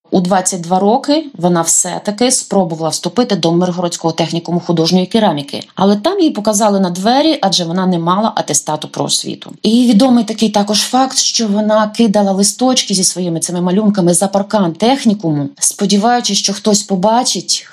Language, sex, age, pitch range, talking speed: Ukrainian, female, 20-39, 165-205 Hz, 150 wpm